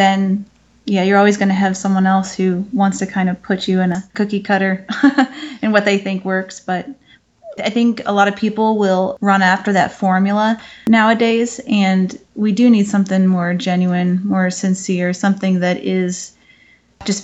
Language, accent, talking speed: English, American, 180 wpm